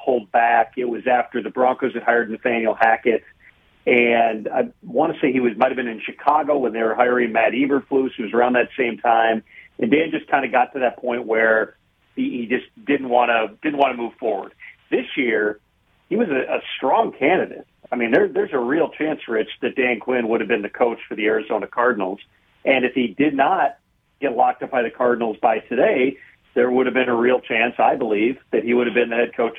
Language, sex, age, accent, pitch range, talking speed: English, male, 40-59, American, 115-130 Hz, 230 wpm